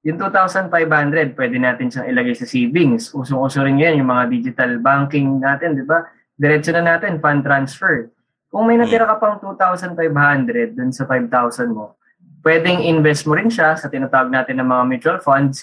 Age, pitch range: 20-39, 135-170 Hz